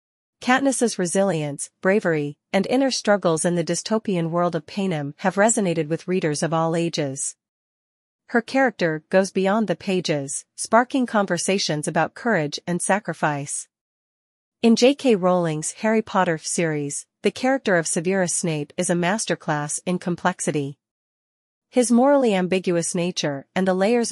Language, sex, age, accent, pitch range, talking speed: English, female, 40-59, American, 160-205 Hz, 135 wpm